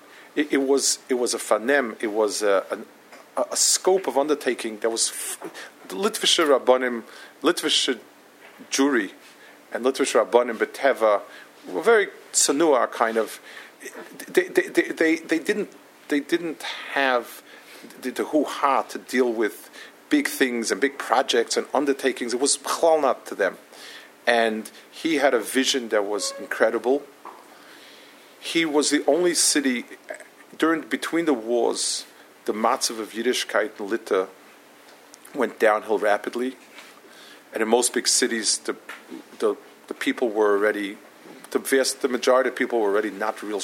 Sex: male